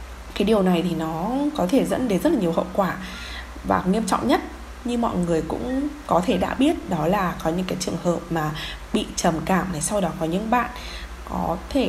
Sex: female